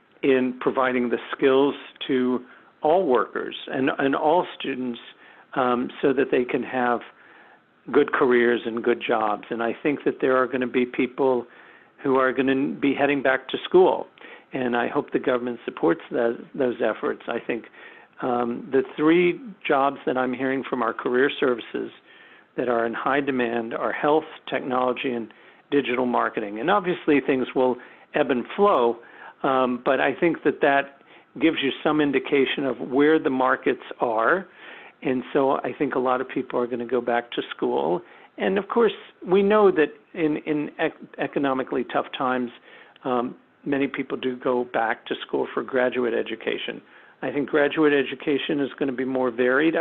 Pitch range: 125-150 Hz